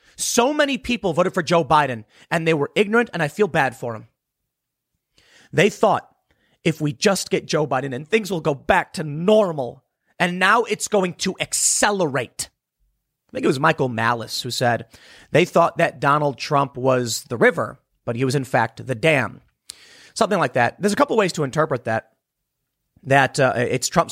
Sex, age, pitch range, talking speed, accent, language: male, 30-49, 130-170 Hz, 190 wpm, American, English